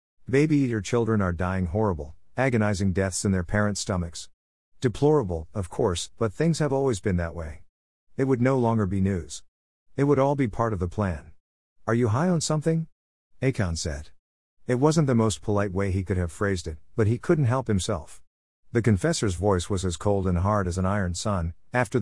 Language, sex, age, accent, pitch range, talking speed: English, male, 50-69, American, 90-120 Hz, 195 wpm